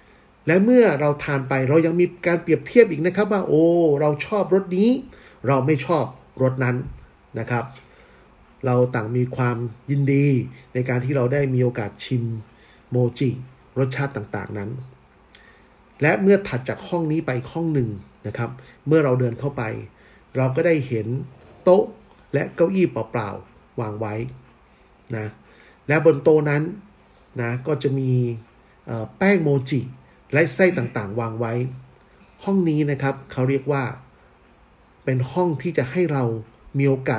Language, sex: Thai, male